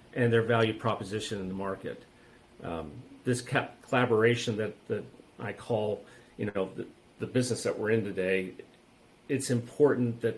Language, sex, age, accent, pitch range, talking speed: English, male, 50-69, American, 110-130 Hz, 150 wpm